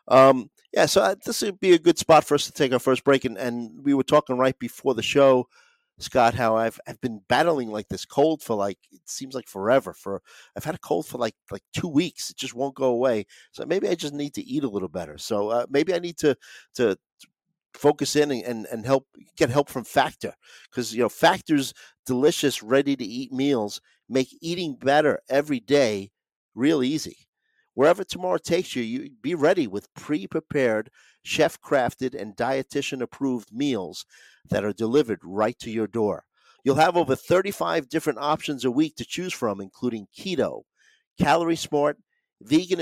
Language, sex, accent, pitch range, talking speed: English, male, American, 125-155 Hz, 190 wpm